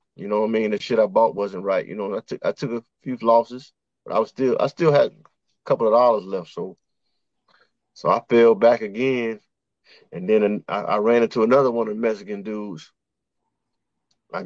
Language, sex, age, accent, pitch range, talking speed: English, male, 20-39, American, 100-115 Hz, 215 wpm